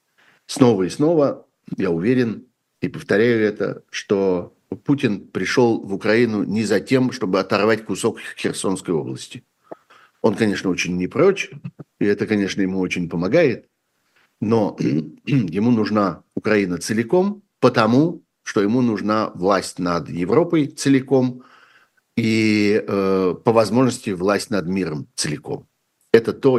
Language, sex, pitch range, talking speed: Russian, male, 90-115 Hz, 125 wpm